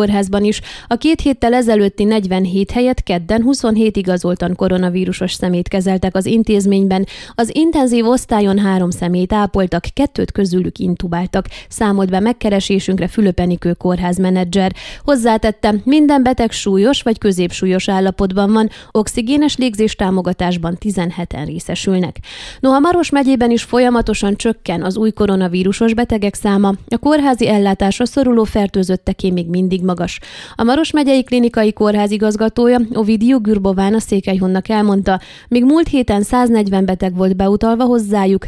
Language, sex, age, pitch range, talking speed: Hungarian, female, 20-39, 190-235 Hz, 125 wpm